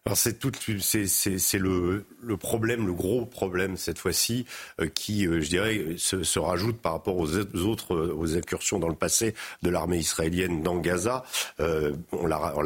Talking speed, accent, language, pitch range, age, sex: 180 wpm, French, French, 85-120 Hz, 50-69, male